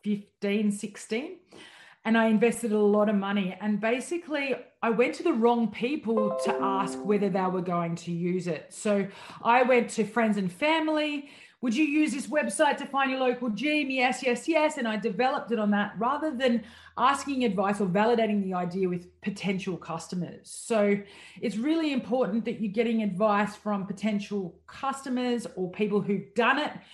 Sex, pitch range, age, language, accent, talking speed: female, 205-250 Hz, 30-49, English, Australian, 175 wpm